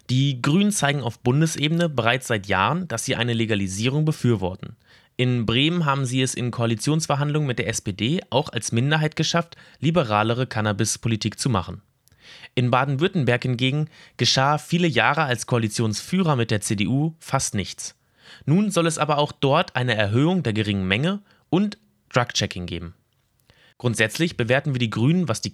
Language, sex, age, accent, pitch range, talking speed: German, male, 20-39, German, 110-150 Hz, 155 wpm